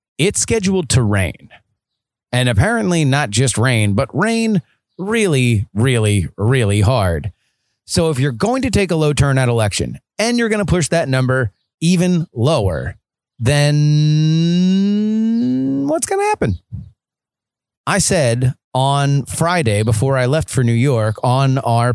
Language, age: English, 30-49